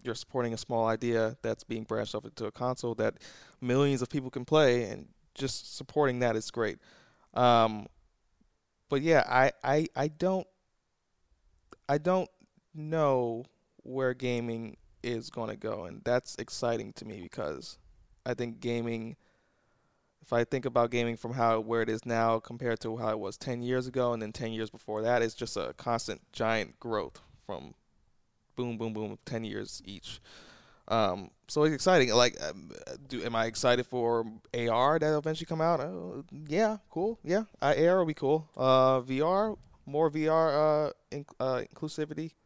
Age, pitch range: 20-39, 115-145 Hz